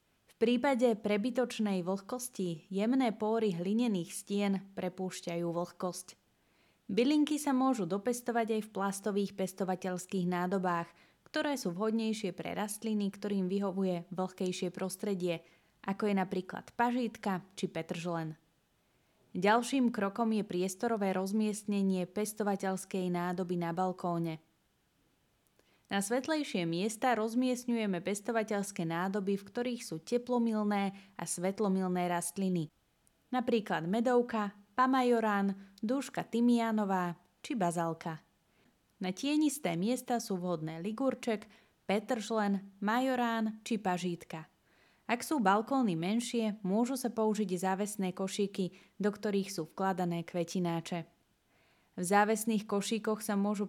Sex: female